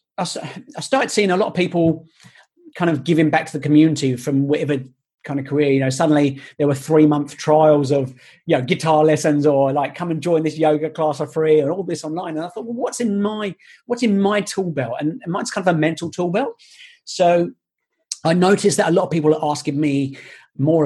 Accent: British